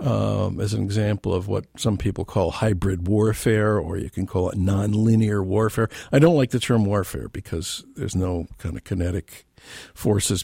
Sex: male